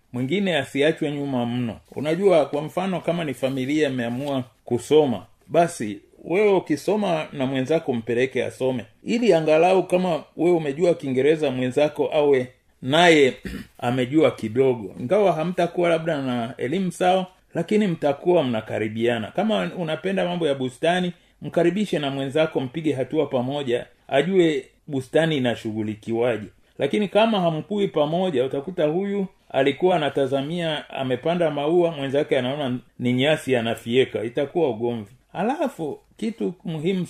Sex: male